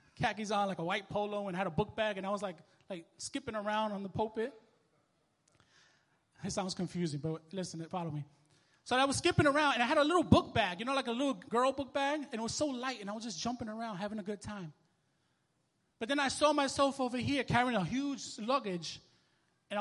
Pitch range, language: 180-240 Hz, English